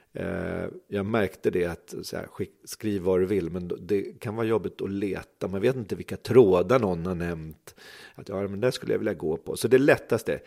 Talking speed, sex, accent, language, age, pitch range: 205 wpm, male, native, Swedish, 40-59, 90-115 Hz